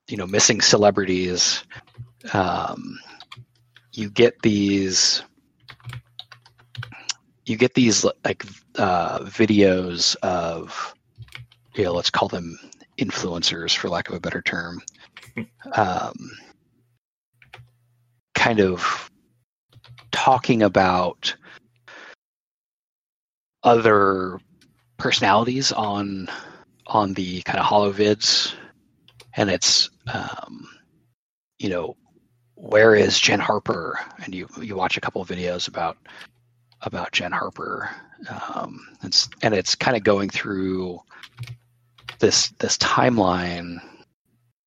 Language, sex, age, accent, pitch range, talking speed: English, male, 30-49, American, 95-120 Hz, 100 wpm